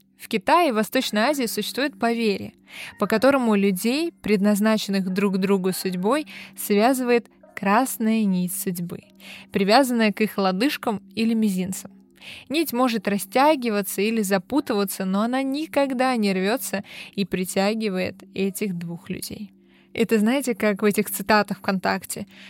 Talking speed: 125 wpm